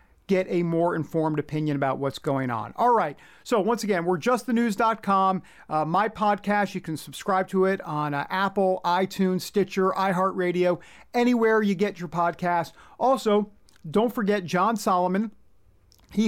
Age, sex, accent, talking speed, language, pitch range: 50-69, male, American, 160 wpm, English, 145-190 Hz